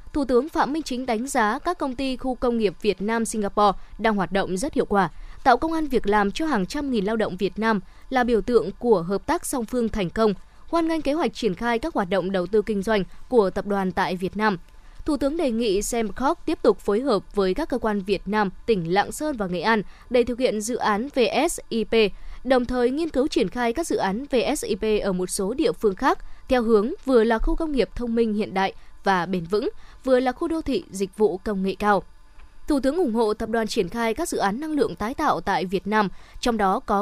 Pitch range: 200-250 Hz